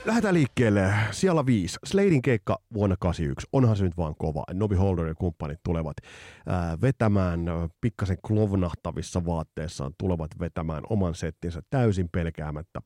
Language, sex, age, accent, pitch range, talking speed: Finnish, male, 30-49, native, 85-105 Hz, 130 wpm